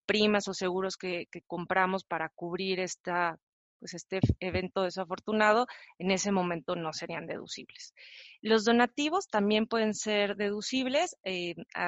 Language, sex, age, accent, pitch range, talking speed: Spanish, female, 30-49, Mexican, 185-210 Hz, 120 wpm